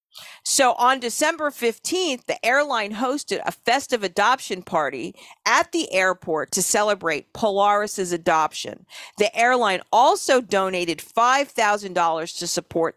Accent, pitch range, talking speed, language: American, 185-265 Hz, 115 wpm, English